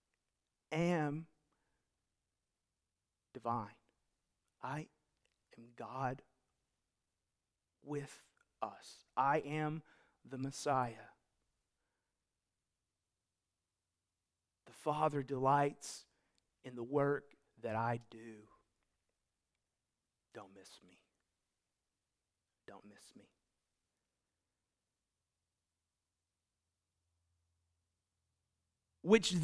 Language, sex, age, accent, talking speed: English, male, 40-59, American, 55 wpm